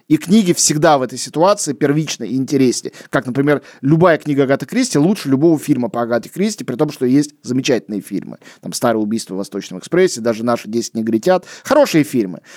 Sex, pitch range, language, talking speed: male, 135-195 Hz, Russian, 185 wpm